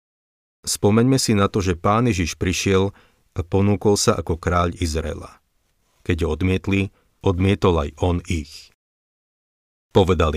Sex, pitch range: male, 80-95 Hz